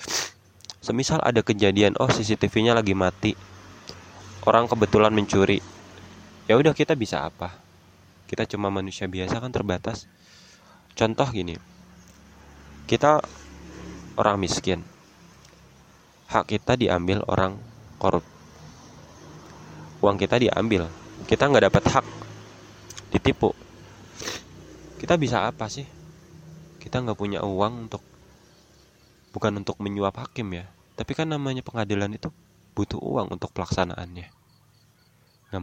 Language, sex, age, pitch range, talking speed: Indonesian, male, 20-39, 95-115 Hz, 105 wpm